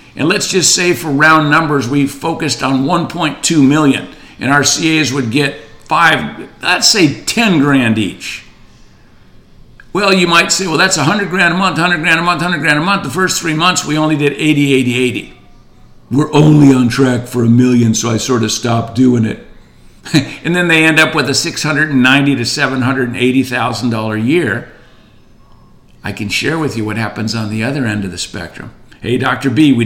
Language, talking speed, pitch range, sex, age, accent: English, 185 wpm, 125-160 Hz, male, 50-69, American